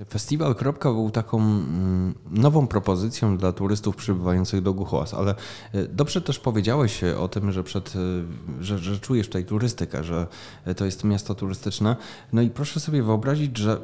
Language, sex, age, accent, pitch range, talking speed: Polish, male, 20-39, native, 100-120 Hz, 145 wpm